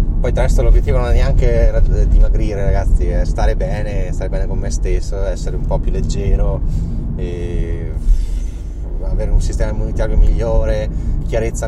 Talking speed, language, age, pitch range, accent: 150 wpm, Italian, 20-39, 75-85 Hz, native